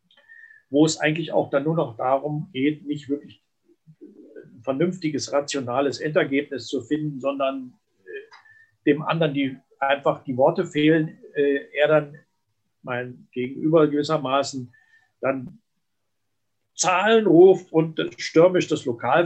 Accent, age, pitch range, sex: German, 50-69, 125-160 Hz, male